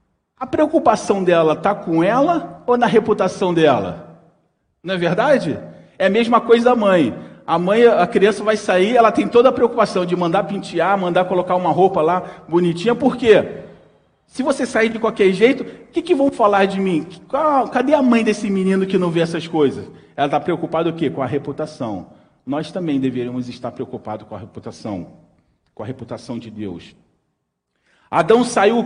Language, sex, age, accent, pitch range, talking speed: Portuguese, male, 40-59, Brazilian, 155-210 Hz, 180 wpm